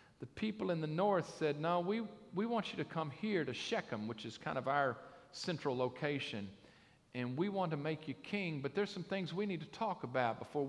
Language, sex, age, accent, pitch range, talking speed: English, male, 50-69, American, 125-175 Hz, 225 wpm